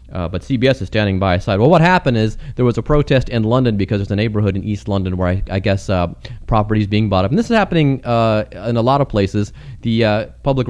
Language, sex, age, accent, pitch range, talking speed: English, male, 30-49, American, 100-125 Hz, 265 wpm